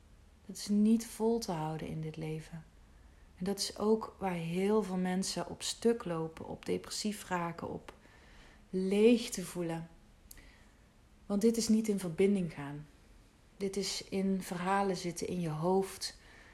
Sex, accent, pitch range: female, Dutch, 165-200 Hz